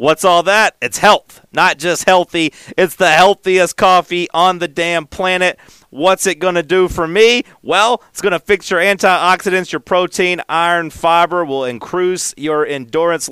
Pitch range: 155-245 Hz